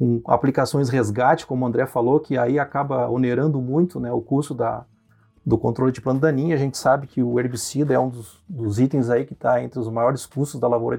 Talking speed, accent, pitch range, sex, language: 215 wpm, Brazilian, 120-155 Hz, male, Portuguese